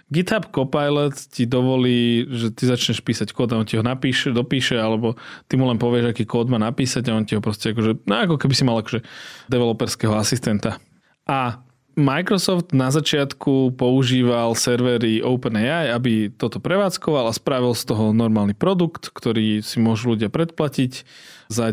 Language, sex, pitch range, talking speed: Slovak, male, 115-135 Hz, 165 wpm